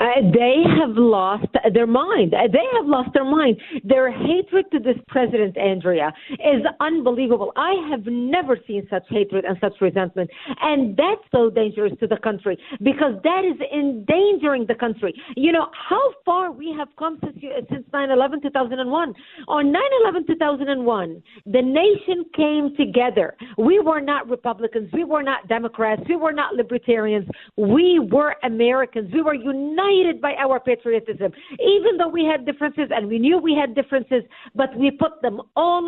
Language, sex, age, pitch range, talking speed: English, female, 50-69, 235-315 Hz, 160 wpm